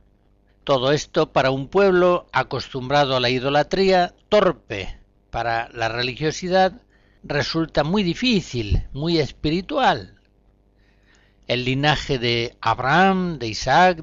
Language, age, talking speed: Spanish, 60-79, 105 wpm